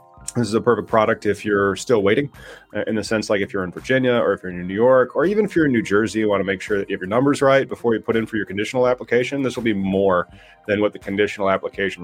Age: 30-49